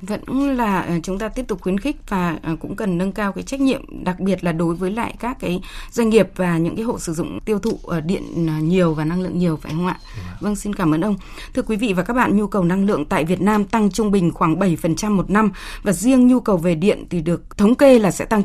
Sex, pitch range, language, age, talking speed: female, 180-230 Hz, Vietnamese, 20-39, 265 wpm